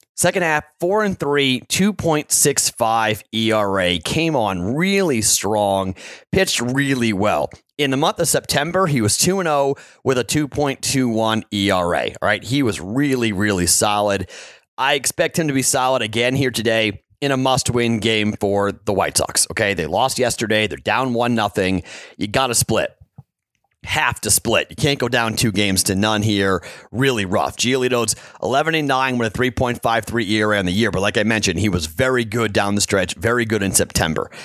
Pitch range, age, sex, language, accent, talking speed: 105-140 Hz, 30-49, male, English, American, 200 wpm